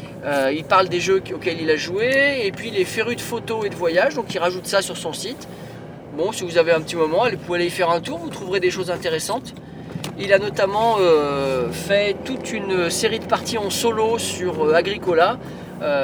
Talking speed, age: 220 wpm, 30-49